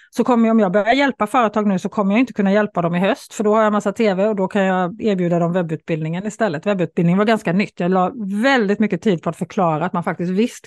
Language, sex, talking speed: Swedish, female, 270 wpm